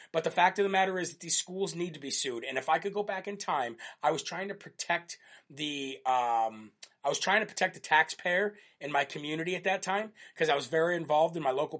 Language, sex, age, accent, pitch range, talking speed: English, male, 30-49, American, 150-185 Hz, 255 wpm